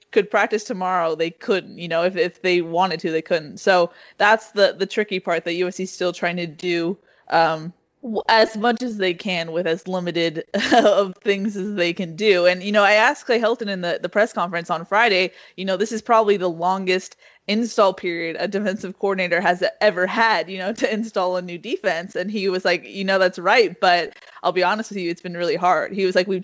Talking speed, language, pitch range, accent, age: 225 wpm, English, 175-200 Hz, American, 20-39